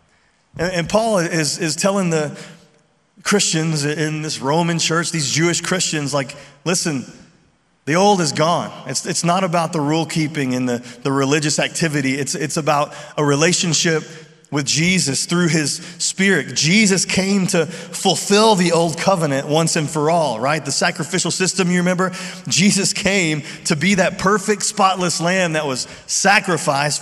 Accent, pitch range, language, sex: American, 150-185 Hz, English, male